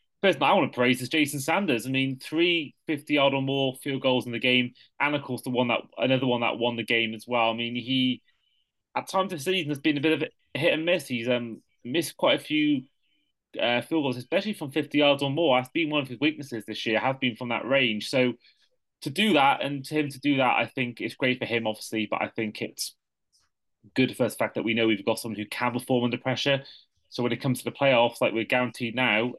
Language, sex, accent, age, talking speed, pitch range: English, male, British, 30-49, 255 wpm, 115-140 Hz